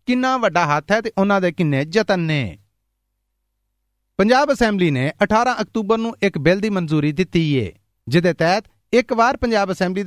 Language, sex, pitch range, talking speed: Punjabi, male, 150-215 Hz, 165 wpm